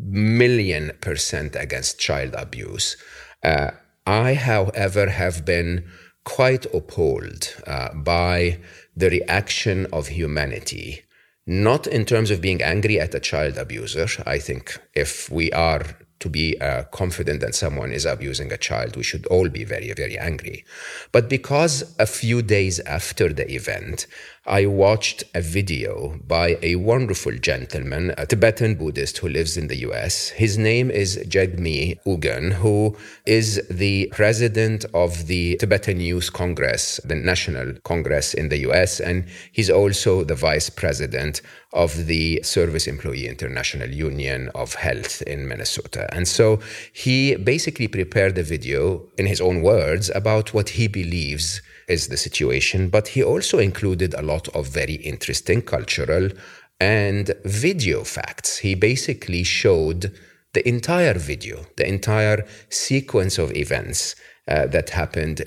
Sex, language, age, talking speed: male, English, 40-59, 140 wpm